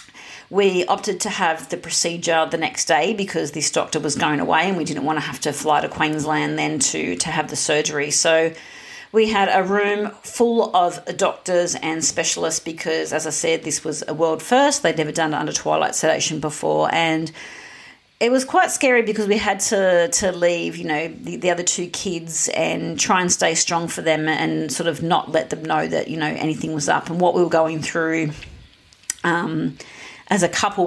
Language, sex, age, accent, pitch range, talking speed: English, female, 40-59, Australian, 160-195 Hz, 205 wpm